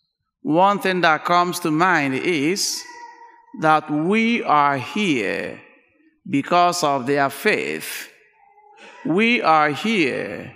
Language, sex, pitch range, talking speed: English, male, 155-215 Hz, 100 wpm